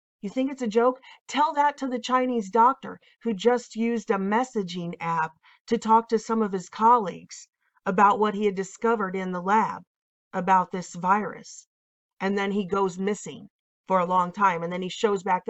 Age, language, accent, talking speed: 40-59, English, American, 190 wpm